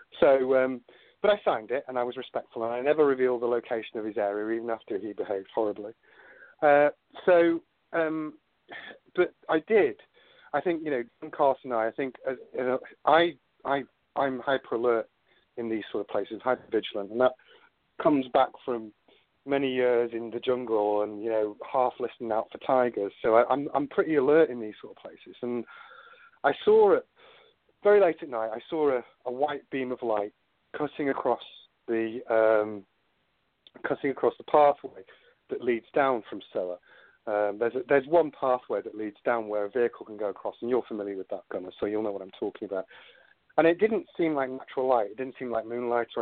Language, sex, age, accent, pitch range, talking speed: English, male, 40-59, British, 115-155 Hz, 200 wpm